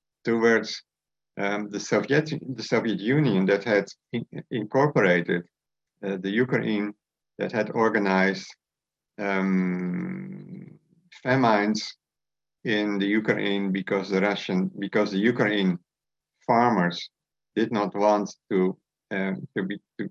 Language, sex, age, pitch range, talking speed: English, male, 50-69, 95-115 Hz, 110 wpm